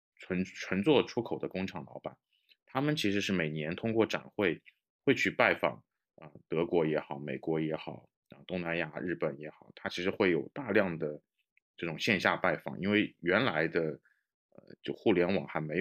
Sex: male